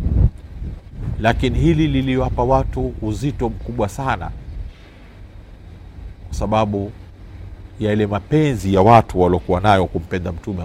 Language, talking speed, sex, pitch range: Swahili, 95 wpm, male, 90-110 Hz